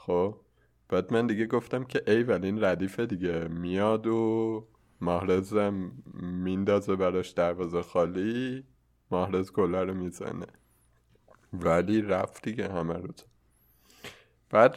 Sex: male